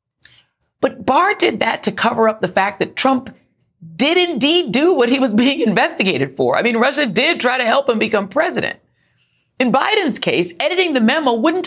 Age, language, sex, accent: 40-59, English, female, American